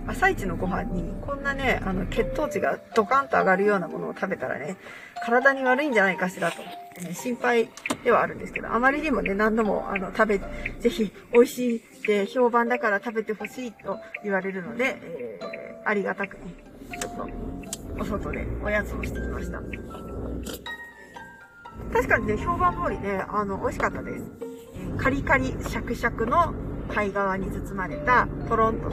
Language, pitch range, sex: Japanese, 195-250 Hz, female